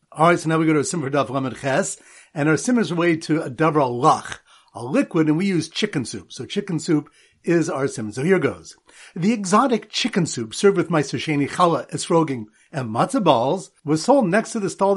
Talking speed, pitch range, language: 220 wpm, 150-205 Hz, English